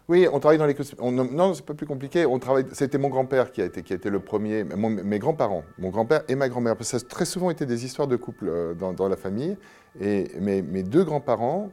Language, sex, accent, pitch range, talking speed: French, male, French, 90-125 Hz, 265 wpm